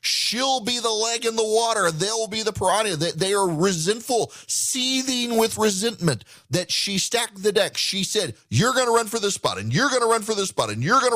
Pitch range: 155-230 Hz